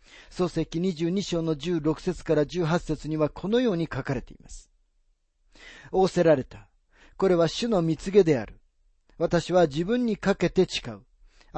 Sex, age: male, 40-59